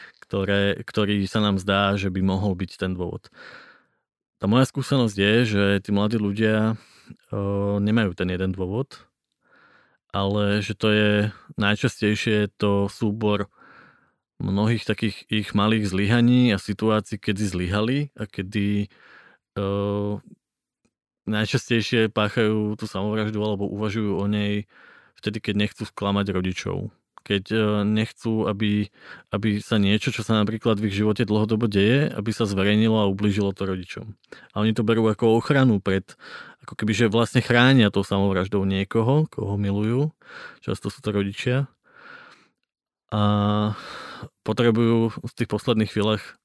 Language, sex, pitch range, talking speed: Slovak, male, 100-110 Hz, 135 wpm